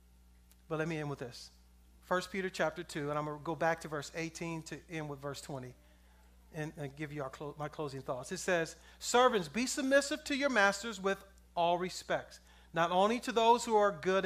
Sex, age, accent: male, 40-59, American